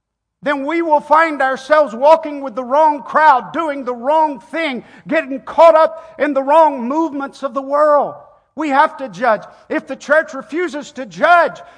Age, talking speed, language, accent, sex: 50-69, 175 wpm, English, American, male